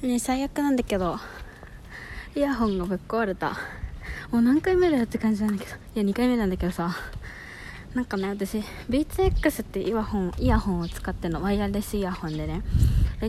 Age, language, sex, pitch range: 20-39, Japanese, female, 170-250 Hz